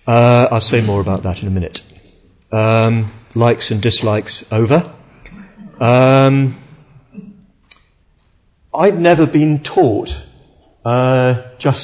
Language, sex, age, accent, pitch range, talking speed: English, male, 50-69, British, 105-125 Hz, 105 wpm